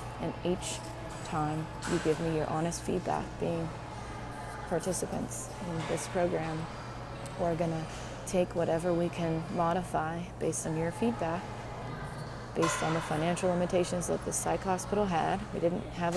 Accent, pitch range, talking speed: American, 150-175 Hz, 140 wpm